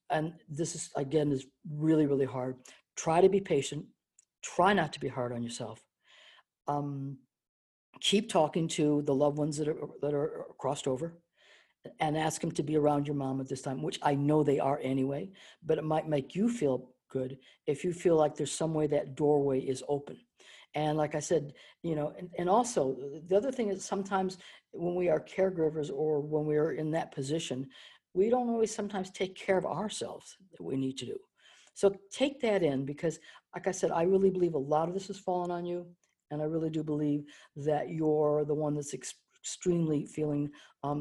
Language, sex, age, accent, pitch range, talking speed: English, female, 60-79, American, 140-170 Hz, 200 wpm